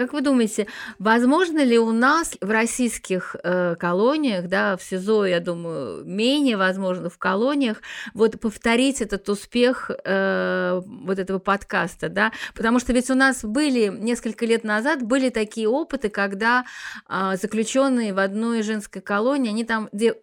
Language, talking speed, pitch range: Russian, 150 wpm, 190-235 Hz